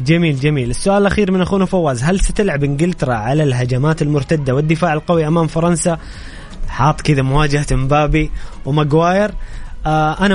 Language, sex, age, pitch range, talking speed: Arabic, male, 20-39, 130-160 Hz, 140 wpm